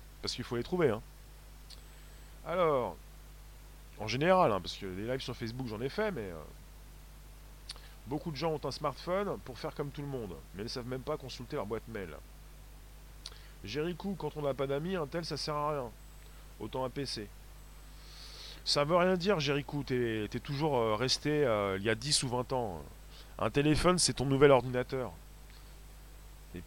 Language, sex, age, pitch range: French, male, 30-49, 115-150 Hz